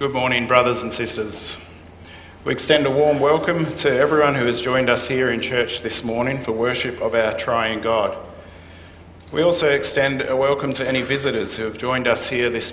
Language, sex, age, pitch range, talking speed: English, male, 50-69, 105-130 Hz, 195 wpm